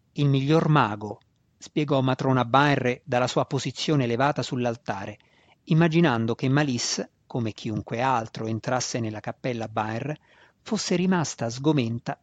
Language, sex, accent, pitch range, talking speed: Italian, male, native, 120-165 Hz, 120 wpm